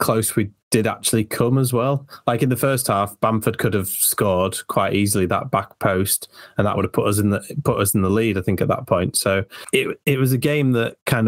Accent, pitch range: British, 100-120 Hz